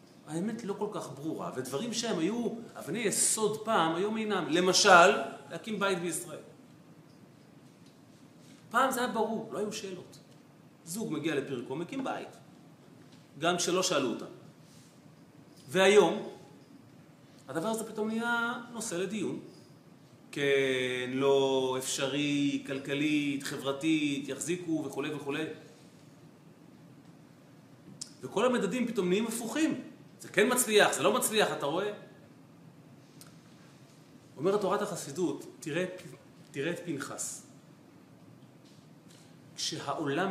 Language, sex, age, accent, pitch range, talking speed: Hebrew, male, 30-49, native, 145-200 Hz, 105 wpm